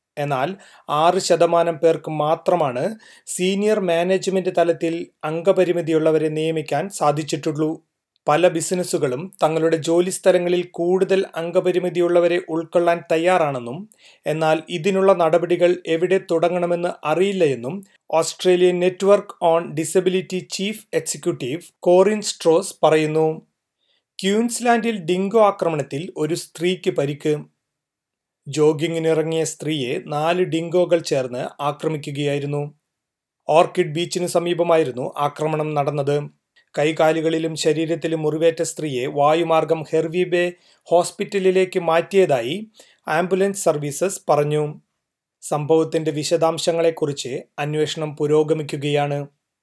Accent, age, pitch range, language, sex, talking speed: native, 30-49, 155-180 Hz, Malayalam, male, 80 wpm